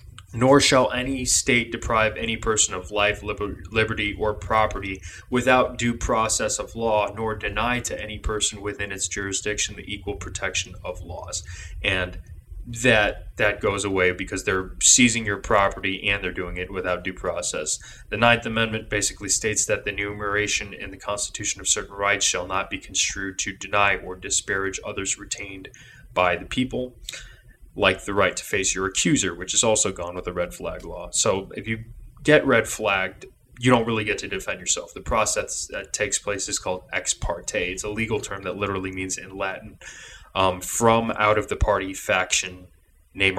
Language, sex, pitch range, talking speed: English, male, 95-110 Hz, 180 wpm